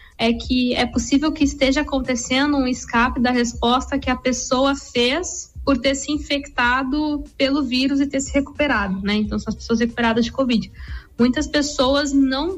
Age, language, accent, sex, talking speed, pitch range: 10-29, Portuguese, Brazilian, female, 170 wpm, 230-280 Hz